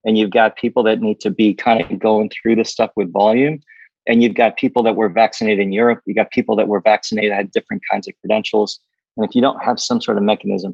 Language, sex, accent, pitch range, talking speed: English, male, American, 100-115 Hz, 255 wpm